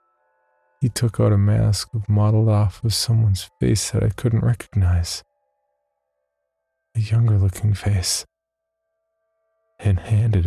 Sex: male